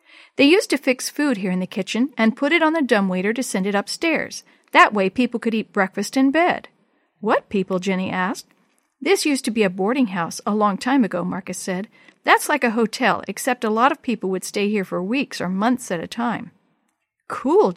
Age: 50-69